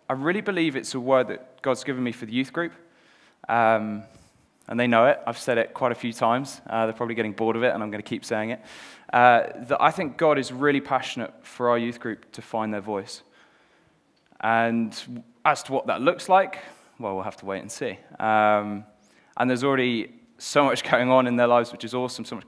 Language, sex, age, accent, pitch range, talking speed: English, male, 20-39, British, 110-130 Hz, 230 wpm